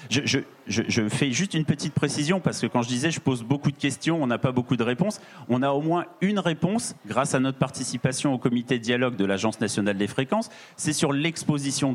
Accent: French